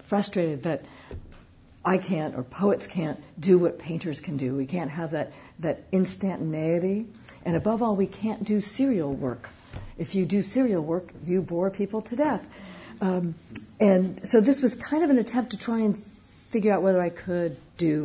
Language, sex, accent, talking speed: English, female, American, 180 wpm